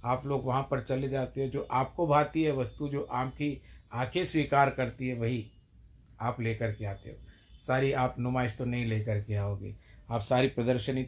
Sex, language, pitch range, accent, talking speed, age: male, Hindi, 110-140 Hz, native, 190 wpm, 60-79